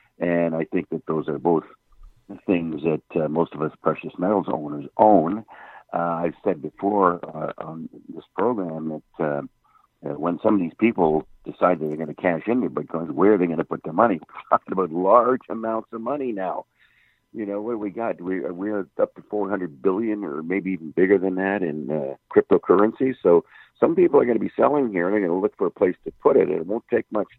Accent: American